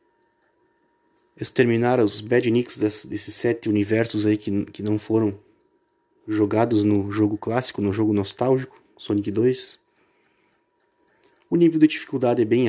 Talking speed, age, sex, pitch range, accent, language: 125 wpm, 30-49, male, 105-145 Hz, Brazilian, Portuguese